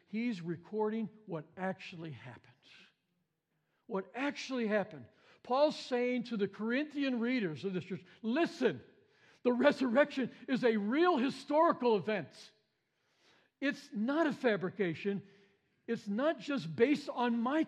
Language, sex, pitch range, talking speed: English, male, 185-260 Hz, 120 wpm